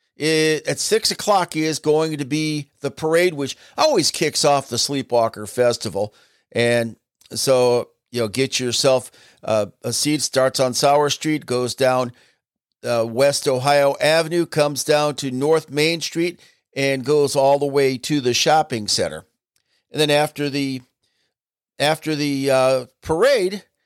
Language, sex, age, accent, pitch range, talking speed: English, male, 50-69, American, 120-150 Hz, 145 wpm